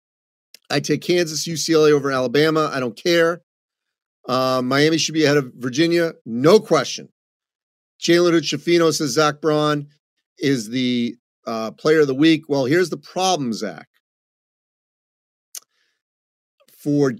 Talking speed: 125 wpm